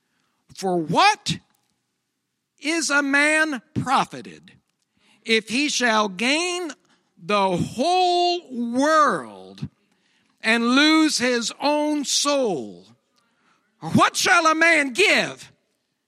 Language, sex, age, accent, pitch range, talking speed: English, male, 60-79, American, 225-295 Hz, 85 wpm